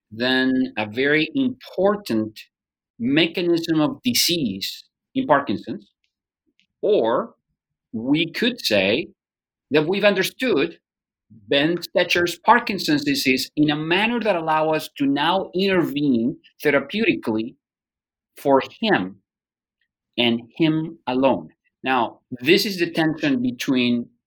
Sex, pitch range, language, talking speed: male, 135-195 Hz, English, 100 wpm